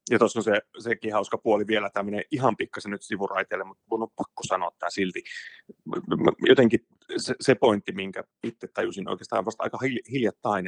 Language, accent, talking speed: Finnish, native, 180 wpm